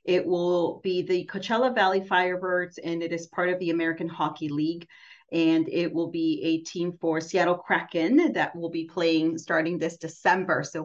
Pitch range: 160-190 Hz